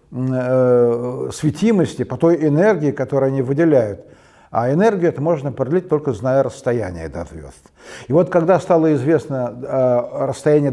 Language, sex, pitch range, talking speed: Russian, male, 130-180 Hz, 135 wpm